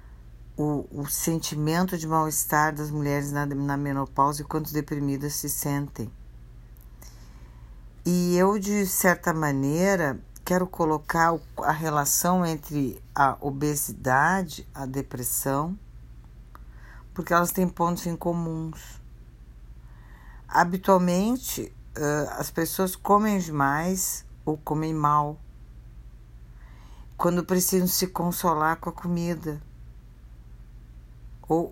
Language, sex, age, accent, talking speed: Portuguese, female, 50-69, Brazilian, 95 wpm